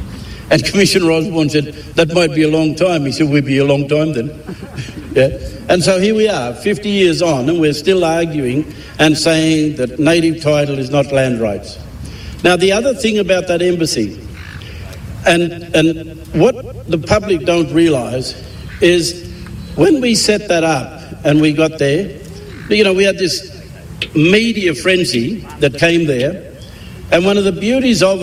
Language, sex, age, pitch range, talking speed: English, male, 60-79, 145-185 Hz, 170 wpm